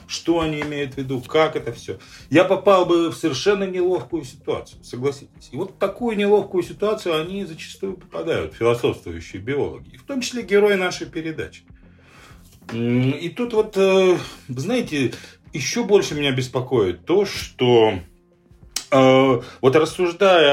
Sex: male